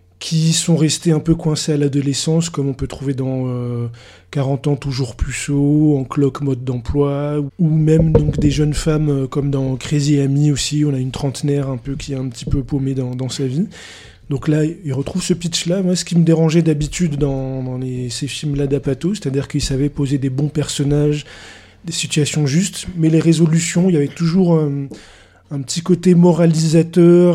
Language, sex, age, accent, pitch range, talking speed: French, male, 20-39, French, 135-160 Hz, 210 wpm